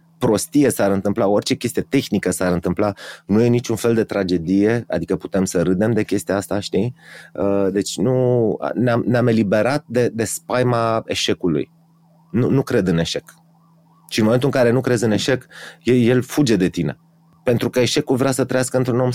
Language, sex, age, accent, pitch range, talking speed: Romanian, male, 30-49, native, 100-150 Hz, 175 wpm